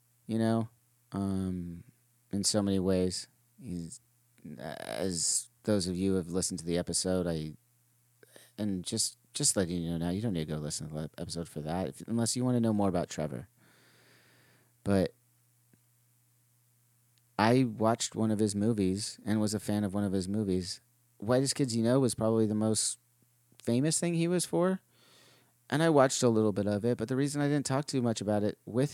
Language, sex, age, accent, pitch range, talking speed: English, male, 30-49, American, 90-120 Hz, 195 wpm